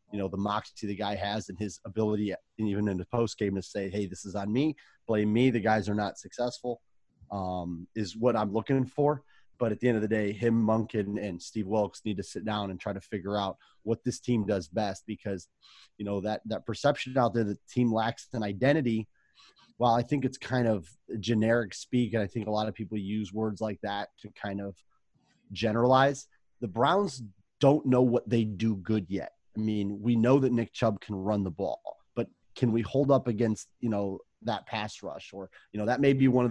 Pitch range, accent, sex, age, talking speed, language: 100-120 Hz, American, male, 30-49, 230 wpm, English